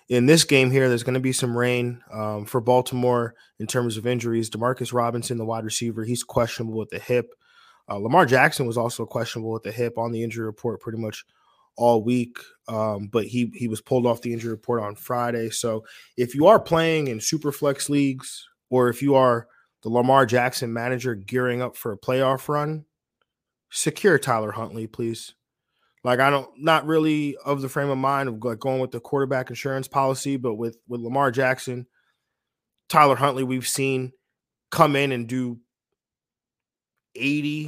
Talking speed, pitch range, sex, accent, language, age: 180 wpm, 120-140 Hz, male, American, English, 20-39